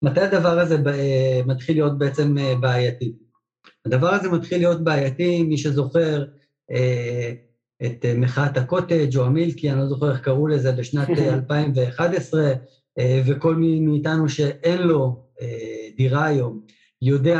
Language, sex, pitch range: Hebrew, male, 130-160 Hz